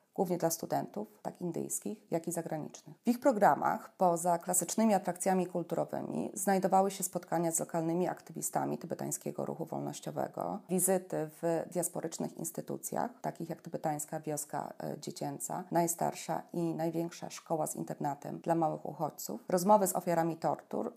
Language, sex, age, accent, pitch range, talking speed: Polish, female, 30-49, native, 170-195 Hz, 130 wpm